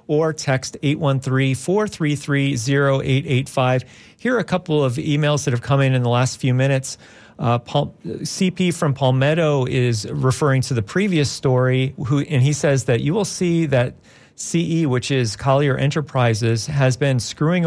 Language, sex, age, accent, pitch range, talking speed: English, male, 40-59, American, 125-150 Hz, 155 wpm